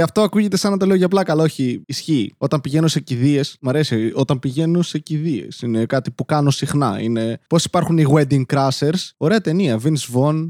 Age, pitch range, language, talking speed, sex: 20-39, 140-190 Hz, Greek, 205 wpm, male